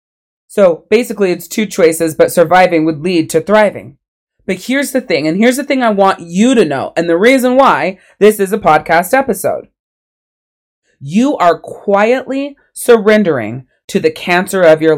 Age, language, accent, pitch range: 30-49, English, American, 165-245 Hz